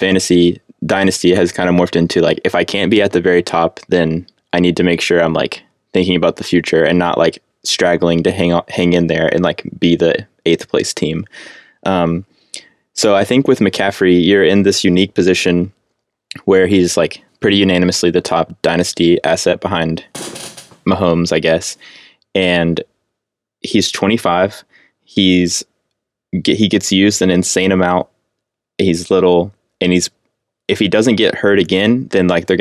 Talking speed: 165 wpm